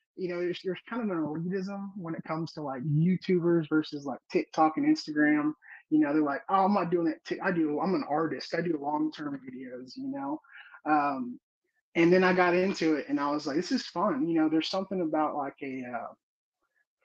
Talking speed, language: 220 wpm, English